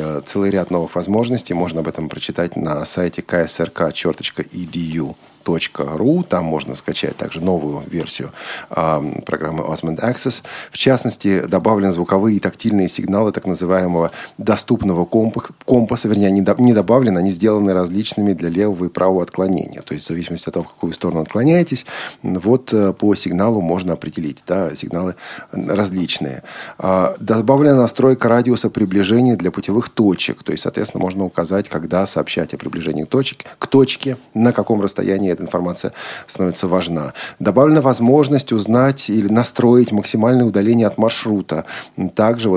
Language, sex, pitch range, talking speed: Russian, male, 90-115 Hz, 150 wpm